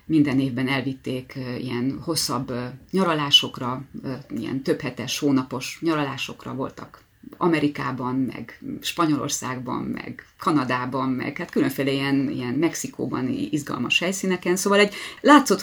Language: Hungarian